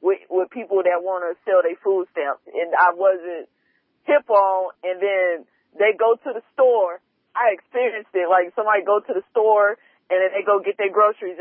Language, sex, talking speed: English, female, 200 wpm